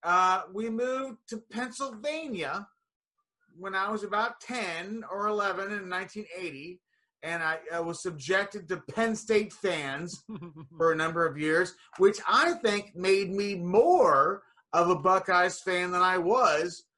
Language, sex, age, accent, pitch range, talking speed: English, male, 30-49, American, 170-230 Hz, 145 wpm